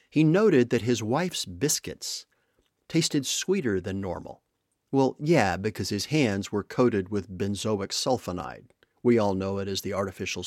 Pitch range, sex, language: 100-135 Hz, male, English